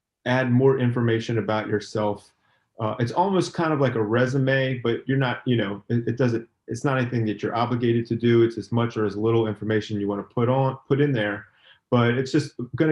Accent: American